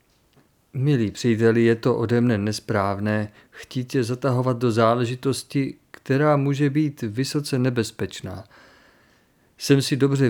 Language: Czech